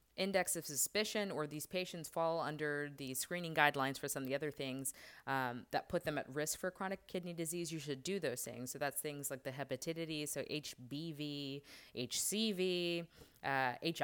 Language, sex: English, female